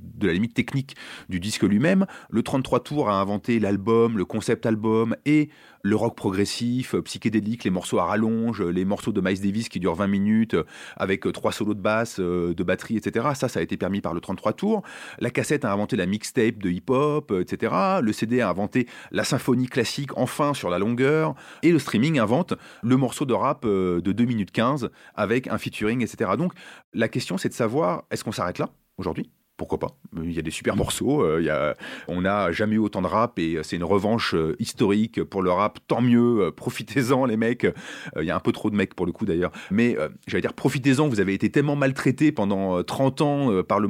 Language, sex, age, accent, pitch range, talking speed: French, male, 30-49, French, 100-130 Hz, 215 wpm